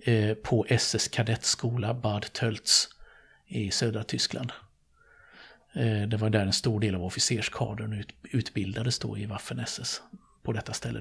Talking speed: 115 wpm